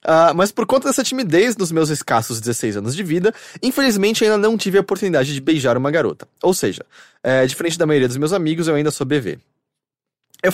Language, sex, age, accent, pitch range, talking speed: Portuguese, male, 20-39, Brazilian, 140-200 Hz, 200 wpm